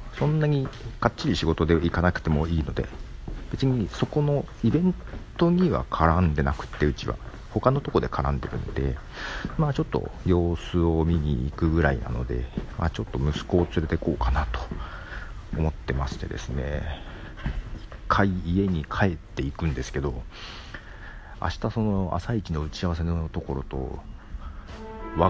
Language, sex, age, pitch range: Japanese, male, 40-59, 75-105 Hz